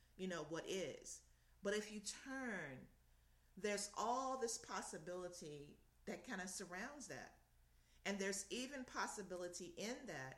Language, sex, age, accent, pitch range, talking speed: English, female, 40-59, American, 150-200 Hz, 135 wpm